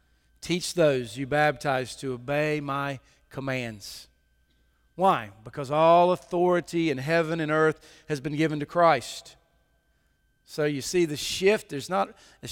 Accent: American